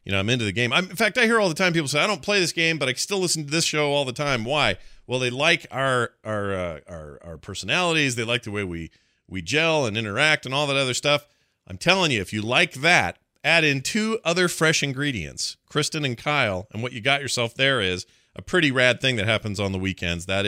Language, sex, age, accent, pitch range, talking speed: English, male, 40-59, American, 105-140 Hz, 260 wpm